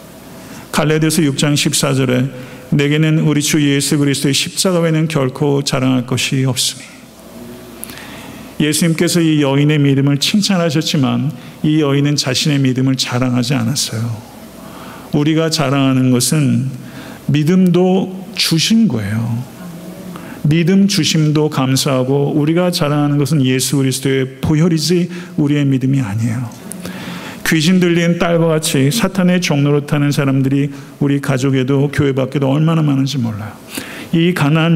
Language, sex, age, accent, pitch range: Korean, male, 50-69, native, 135-175 Hz